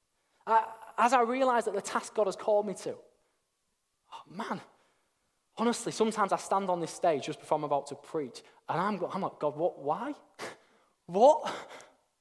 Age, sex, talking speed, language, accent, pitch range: 20-39, male, 160 wpm, English, British, 155-220 Hz